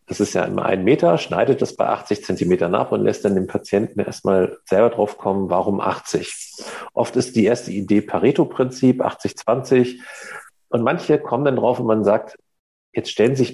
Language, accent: German, German